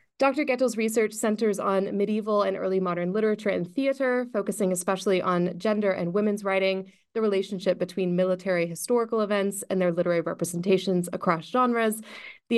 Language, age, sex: English, 20-39, female